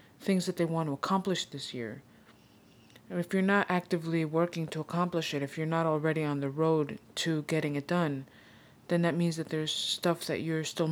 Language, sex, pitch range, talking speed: English, female, 145-170 Hz, 200 wpm